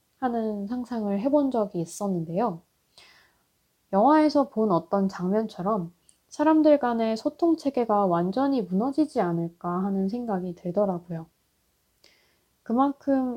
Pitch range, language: 185-250 Hz, Korean